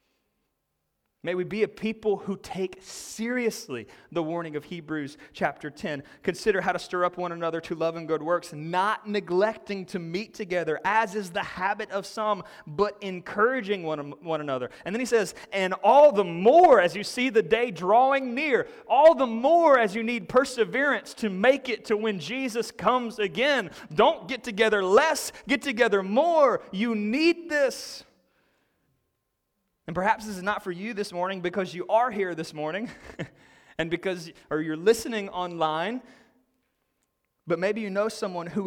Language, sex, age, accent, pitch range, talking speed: English, male, 30-49, American, 175-230 Hz, 170 wpm